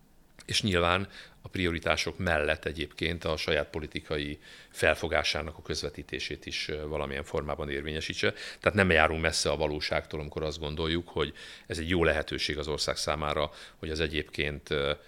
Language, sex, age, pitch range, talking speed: Hungarian, male, 50-69, 75-85 Hz, 145 wpm